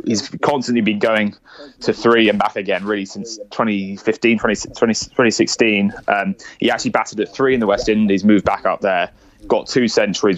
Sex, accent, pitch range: male, British, 100-115 Hz